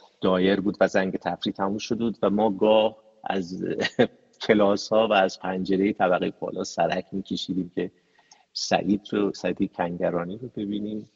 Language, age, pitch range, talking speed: Persian, 50-69, 95-120 Hz, 140 wpm